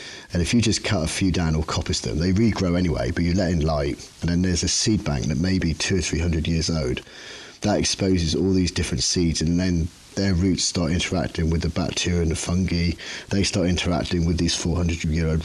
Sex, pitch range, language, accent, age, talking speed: male, 85-100 Hz, English, British, 30-49, 220 wpm